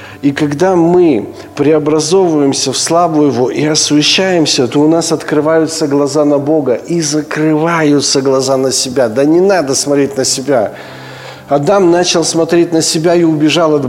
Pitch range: 150-170 Hz